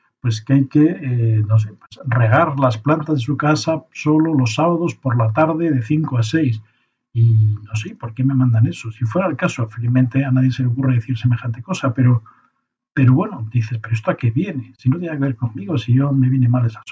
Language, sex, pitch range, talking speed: Spanish, male, 115-140 Hz, 235 wpm